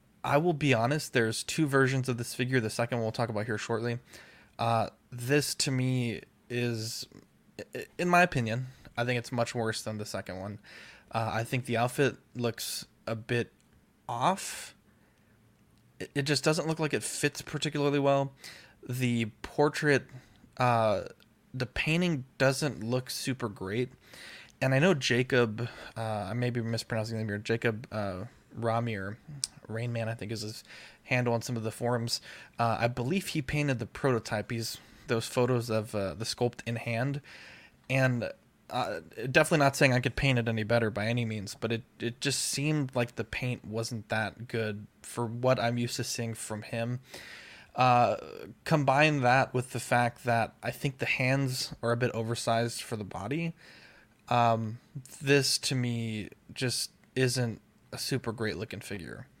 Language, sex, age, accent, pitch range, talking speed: English, male, 20-39, American, 115-135 Hz, 170 wpm